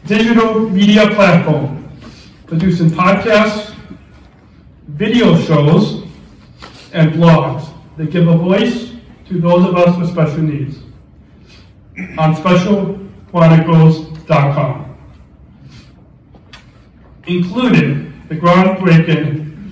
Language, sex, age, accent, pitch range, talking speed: English, male, 40-59, American, 145-175 Hz, 75 wpm